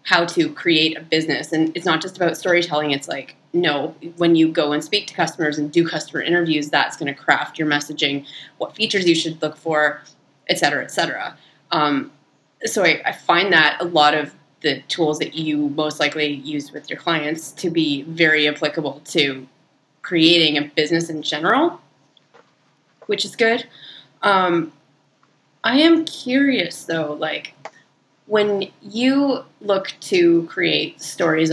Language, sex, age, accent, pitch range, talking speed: English, female, 20-39, American, 150-180 Hz, 160 wpm